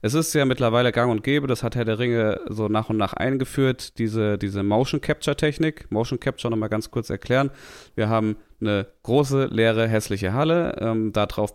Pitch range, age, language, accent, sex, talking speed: 105-135 Hz, 30-49, German, German, male, 175 wpm